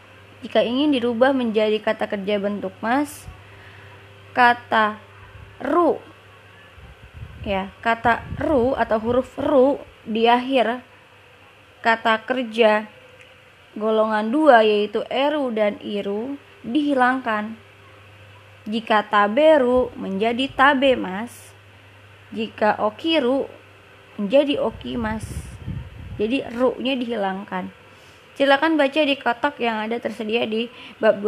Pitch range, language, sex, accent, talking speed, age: 200-250 Hz, Indonesian, female, native, 95 wpm, 20-39